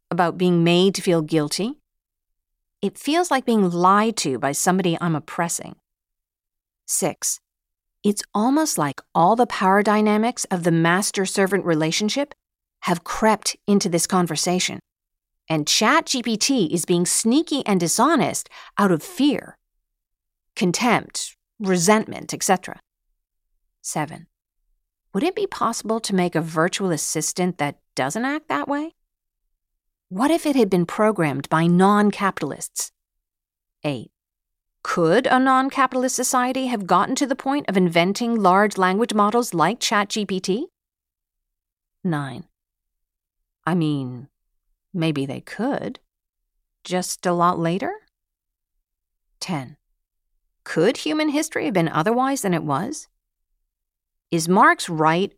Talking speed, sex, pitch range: 120 wpm, female, 160-225 Hz